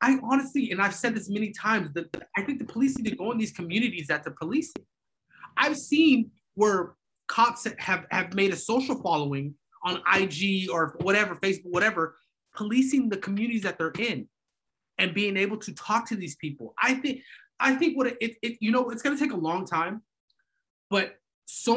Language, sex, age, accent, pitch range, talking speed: English, male, 30-49, American, 165-245 Hz, 195 wpm